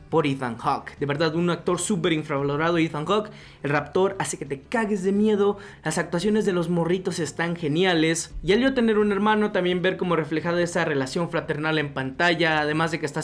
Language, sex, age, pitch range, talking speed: Spanish, male, 20-39, 150-210 Hz, 205 wpm